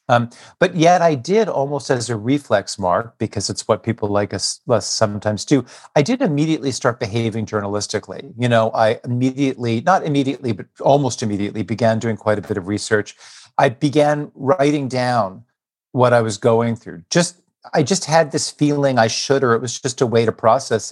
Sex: male